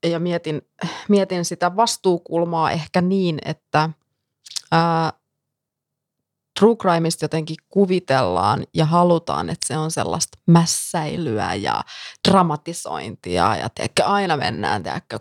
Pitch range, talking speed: 155-185 Hz, 105 wpm